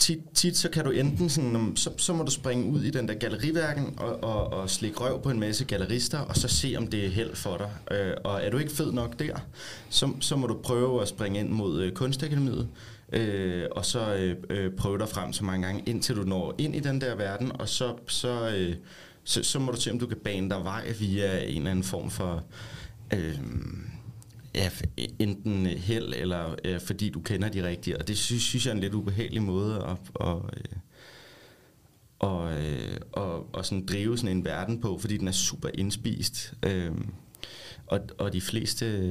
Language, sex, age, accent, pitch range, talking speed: Danish, male, 30-49, native, 95-120 Hz, 210 wpm